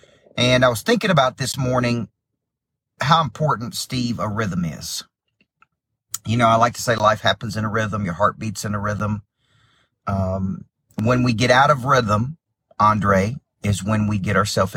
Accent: American